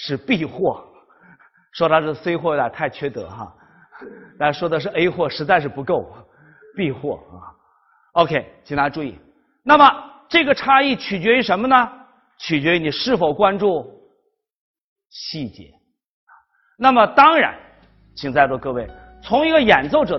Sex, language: male, Chinese